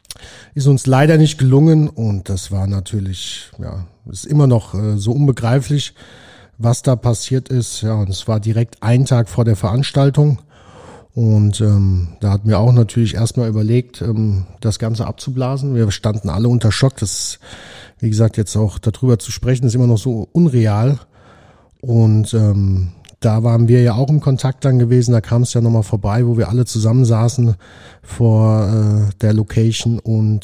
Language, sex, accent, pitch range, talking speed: German, male, German, 105-130 Hz, 175 wpm